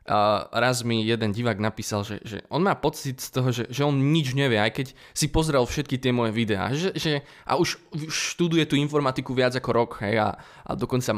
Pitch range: 110-155 Hz